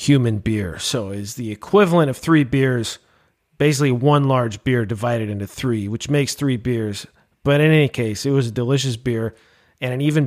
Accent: American